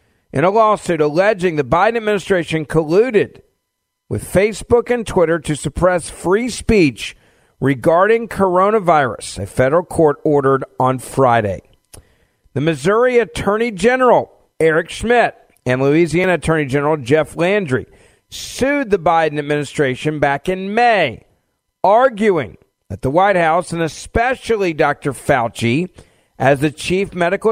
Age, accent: 50-69, American